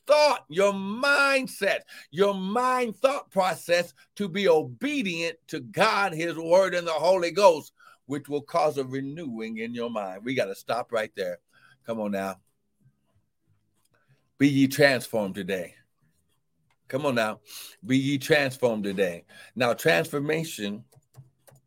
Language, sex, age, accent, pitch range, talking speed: English, male, 60-79, American, 115-160 Hz, 135 wpm